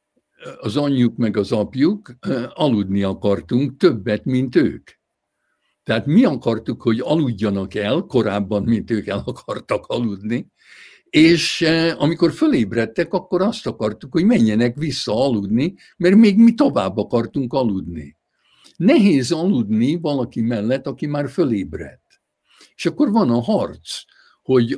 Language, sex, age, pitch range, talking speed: Hungarian, male, 60-79, 115-175 Hz, 125 wpm